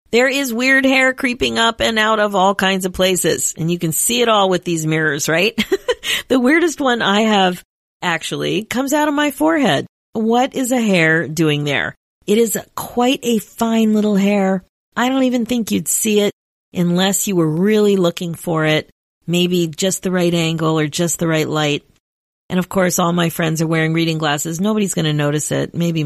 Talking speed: 200 wpm